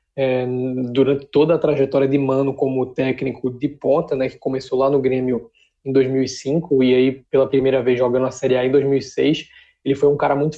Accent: Brazilian